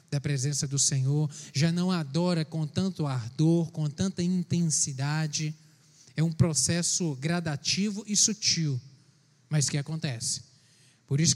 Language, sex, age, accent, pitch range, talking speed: Portuguese, male, 20-39, Brazilian, 150-200 Hz, 125 wpm